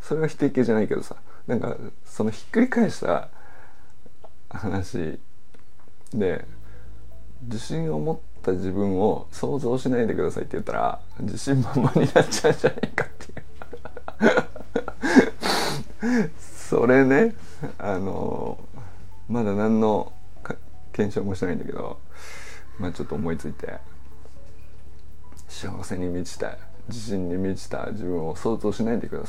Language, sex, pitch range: Japanese, male, 85-125 Hz